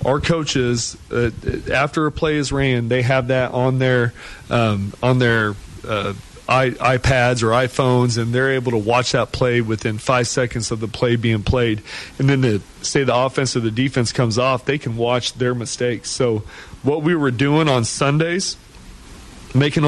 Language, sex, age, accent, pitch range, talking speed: English, male, 40-59, American, 115-135 Hz, 180 wpm